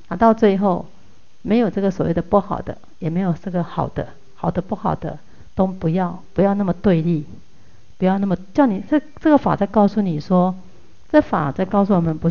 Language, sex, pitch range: Chinese, female, 170-210 Hz